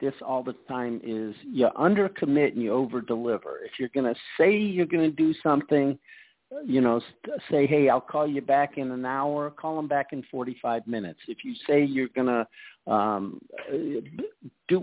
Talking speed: 185 wpm